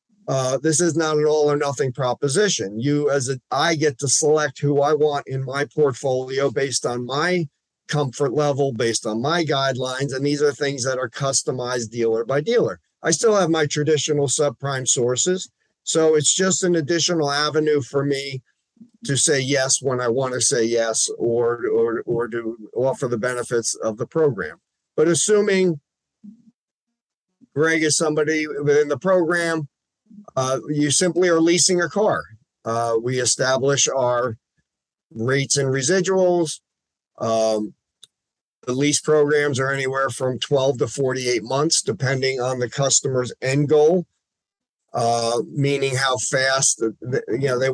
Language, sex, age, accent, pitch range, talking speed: English, male, 50-69, American, 125-155 Hz, 150 wpm